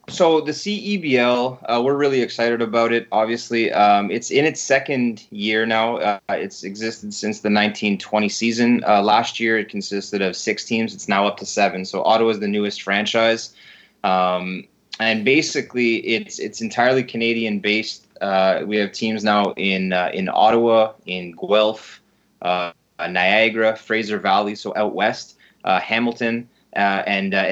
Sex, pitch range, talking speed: male, 105-120 Hz, 160 wpm